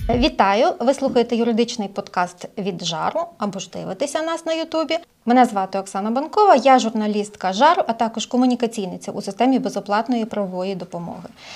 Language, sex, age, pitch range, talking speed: Ukrainian, female, 30-49, 220-275 Hz, 150 wpm